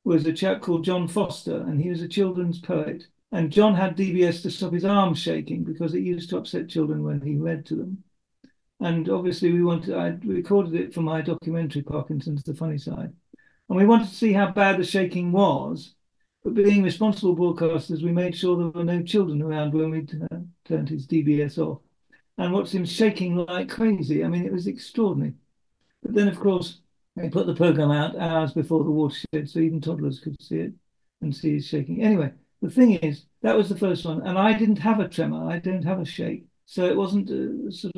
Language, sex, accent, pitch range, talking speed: English, male, British, 160-190 Hz, 210 wpm